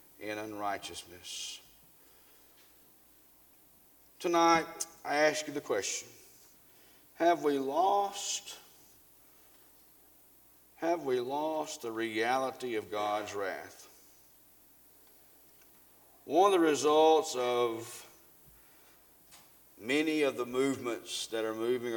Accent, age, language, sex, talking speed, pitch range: American, 50-69, English, male, 85 wpm, 115-160 Hz